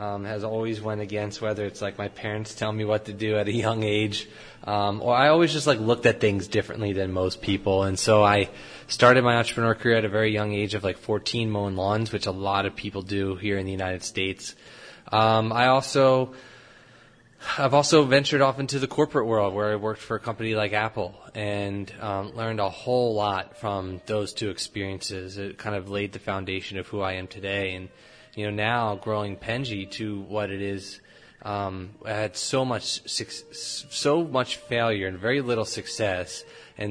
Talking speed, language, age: 200 wpm, English, 20-39